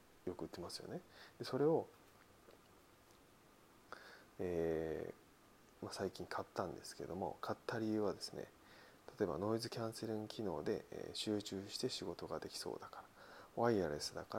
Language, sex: Japanese, male